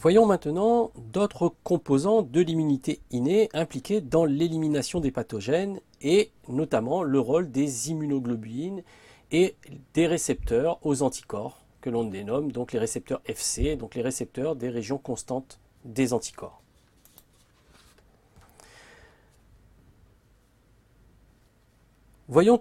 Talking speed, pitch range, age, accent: 105 wpm, 120-175 Hz, 40-59, French